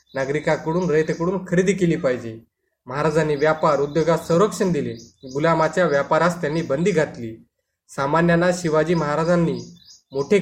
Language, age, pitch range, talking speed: Marathi, 20-39, 135-170 Hz, 110 wpm